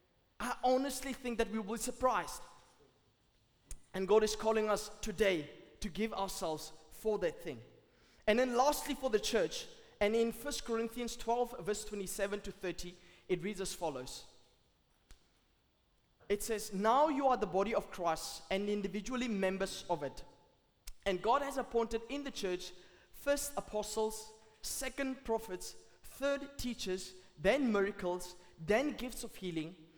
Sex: male